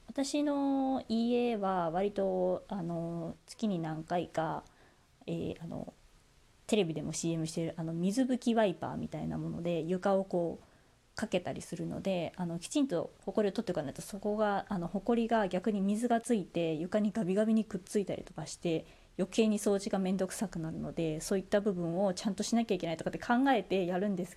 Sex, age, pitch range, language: female, 20-39, 170-235 Hz, Japanese